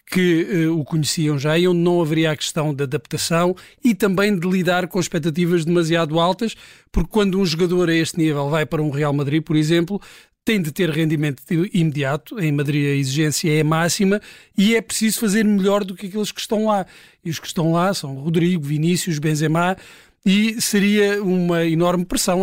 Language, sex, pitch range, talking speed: Portuguese, male, 160-200 Hz, 185 wpm